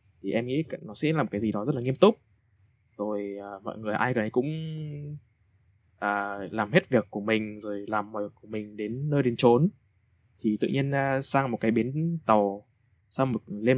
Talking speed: 215 wpm